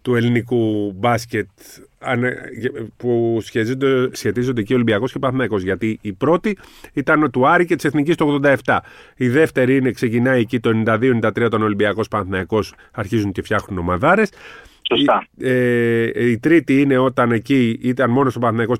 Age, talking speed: 30-49, 155 wpm